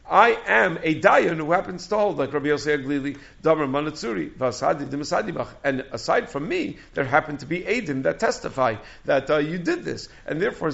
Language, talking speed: English, 190 wpm